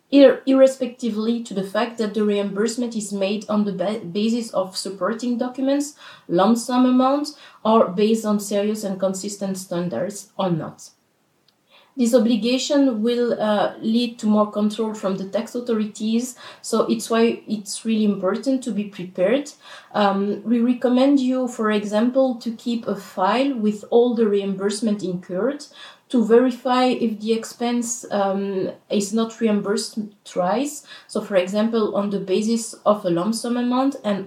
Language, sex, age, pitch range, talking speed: English, female, 30-49, 200-235 Hz, 150 wpm